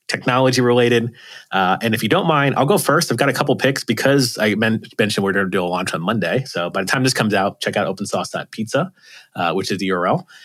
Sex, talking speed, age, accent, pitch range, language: male, 245 wpm, 30-49, American, 95-130 Hz, English